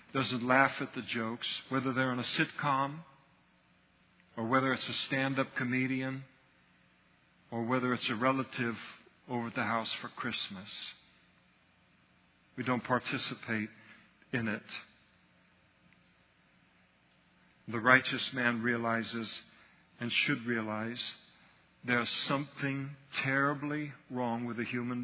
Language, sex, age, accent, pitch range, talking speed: English, male, 50-69, American, 110-135 Hz, 110 wpm